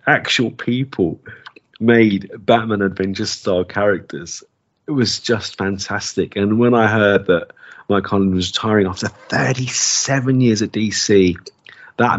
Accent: British